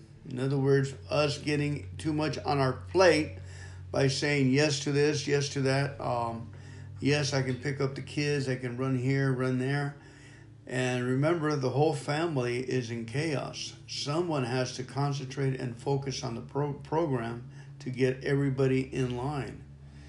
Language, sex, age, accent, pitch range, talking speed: English, male, 50-69, American, 120-140 Hz, 160 wpm